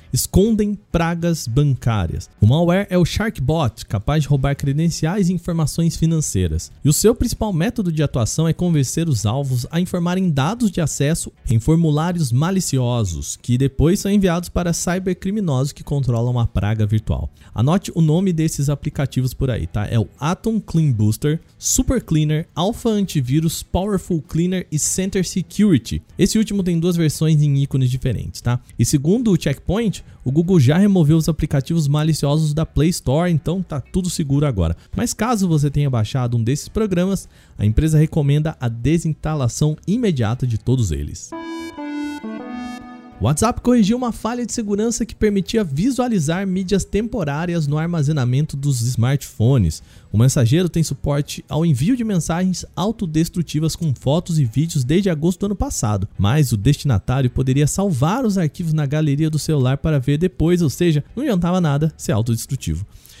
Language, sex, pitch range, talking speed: Portuguese, male, 130-180 Hz, 160 wpm